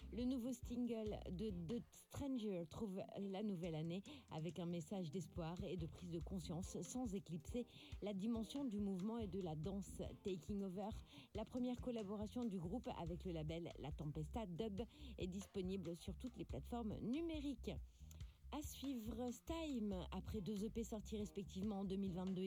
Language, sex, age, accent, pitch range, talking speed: French, female, 40-59, French, 170-230 Hz, 160 wpm